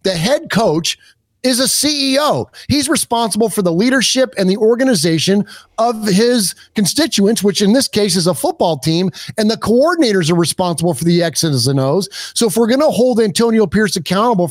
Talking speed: 180 wpm